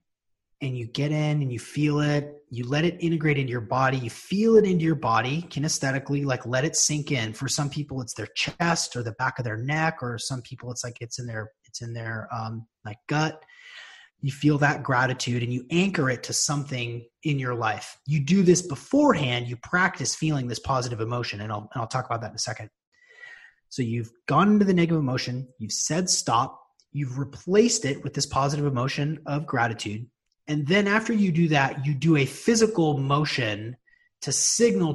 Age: 30-49